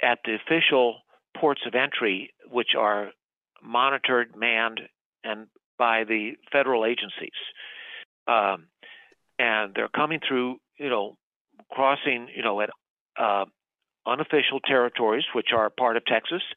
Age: 50-69